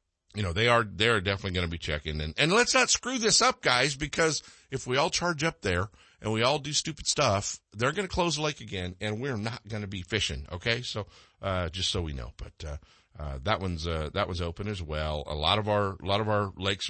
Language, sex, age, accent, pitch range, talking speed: English, male, 50-69, American, 95-135 Hz, 255 wpm